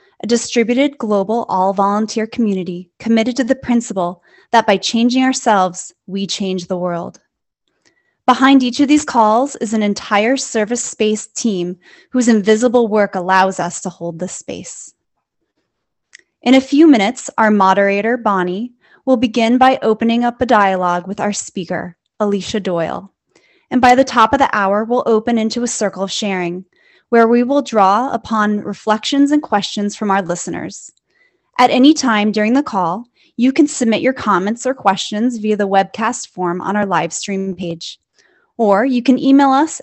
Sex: female